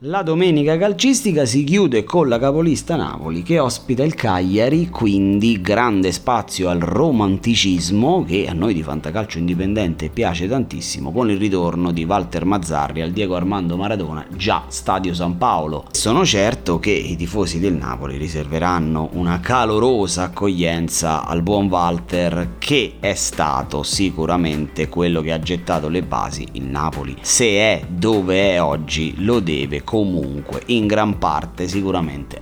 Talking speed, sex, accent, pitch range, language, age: 145 wpm, male, native, 85-105 Hz, Italian, 30-49